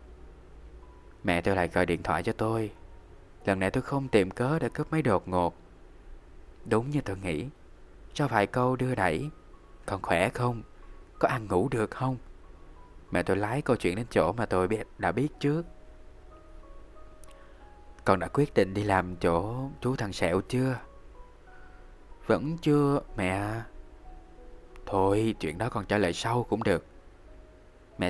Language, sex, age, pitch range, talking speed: Vietnamese, male, 20-39, 90-125 Hz, 155 wpm